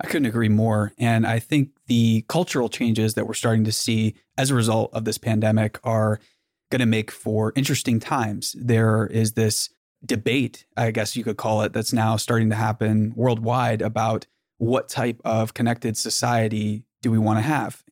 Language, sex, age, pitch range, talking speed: English, male, 20-39, 110-125 Hz, 185 wpm